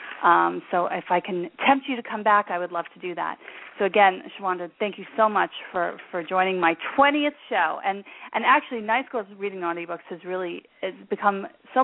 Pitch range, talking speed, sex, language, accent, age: 175-210 Hz, 210 wpm, female, English, American, 40-59